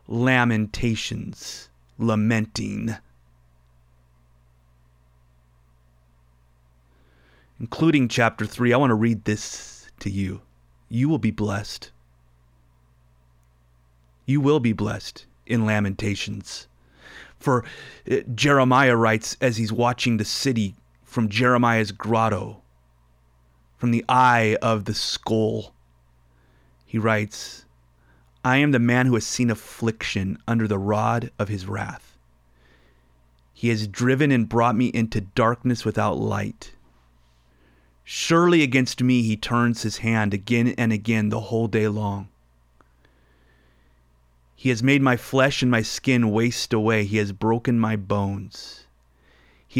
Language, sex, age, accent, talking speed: English, male, 30-49, American, 115 wpm